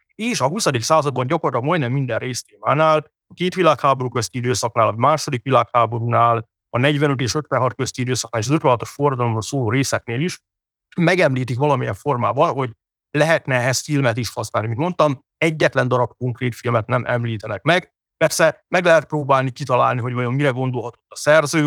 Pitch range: 120-145 Hz